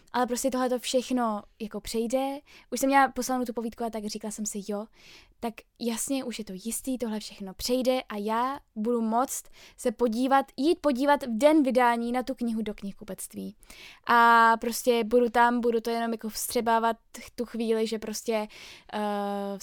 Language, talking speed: Czech, 175 wpm